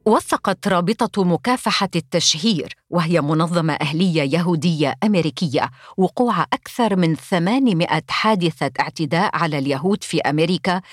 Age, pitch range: 50-69, 155-195 Hz